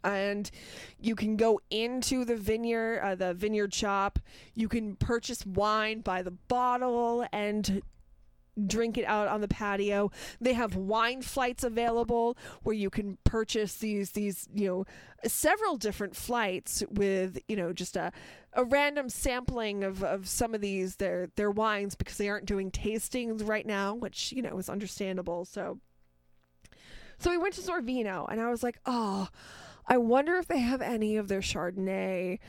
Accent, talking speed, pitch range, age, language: American, 165 wpm, 195-245 Hz, 20-39, English